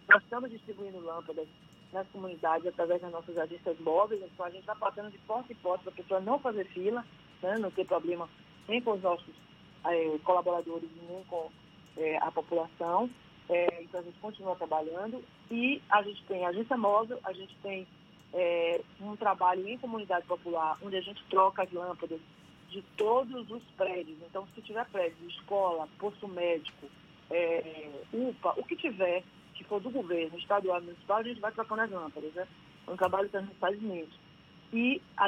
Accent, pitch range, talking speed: Brazilian, 175-215 Hz, 180 wpm